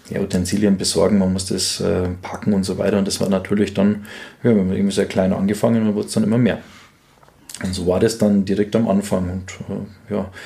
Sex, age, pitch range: male, 20-39, 95-110 Hz